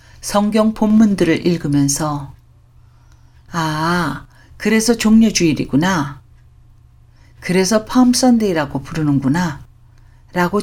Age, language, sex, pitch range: 50-69, Korean, female, 120-180 Hz